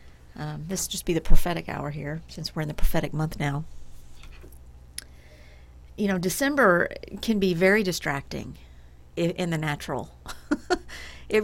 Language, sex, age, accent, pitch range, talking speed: English, female, 50-69, American, 145-190 Hz, 145 wpm